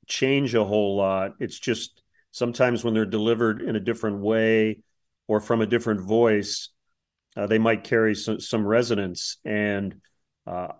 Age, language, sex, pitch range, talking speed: 40-59, English, male, 110-125 Hz, 155 wpm